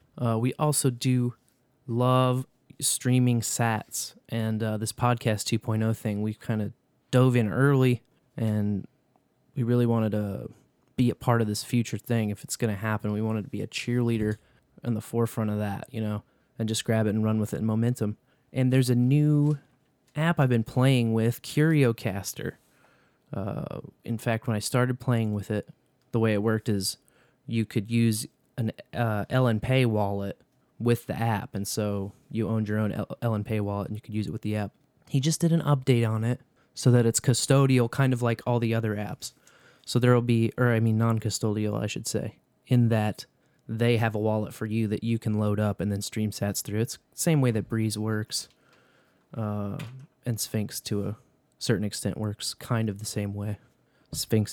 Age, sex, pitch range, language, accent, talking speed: 20-39, male, 105-125 Hz, English, American, 195 wpm